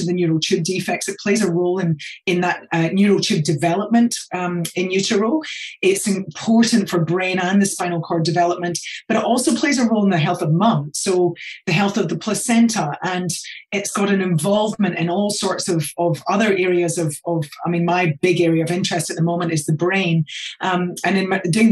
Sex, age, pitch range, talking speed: female, 30-49, 170-195 Hz, 205 wpm